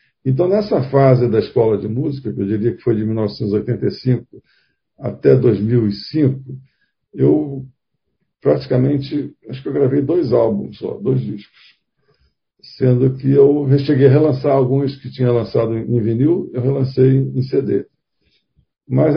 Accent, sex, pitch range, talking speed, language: Brazilian, male, 125-155 Hz, 140 wpm, Portuguese